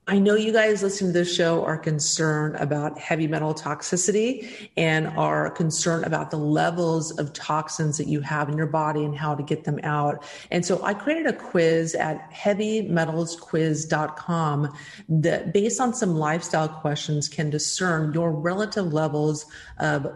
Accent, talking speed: American, 160 wpm